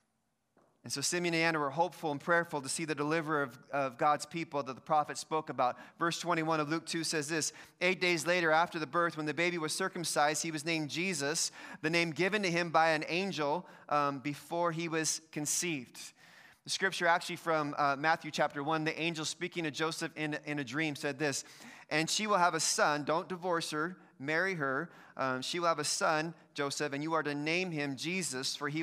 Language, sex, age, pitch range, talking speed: English, male, 30-49, 150-180 Hz, 215 wpm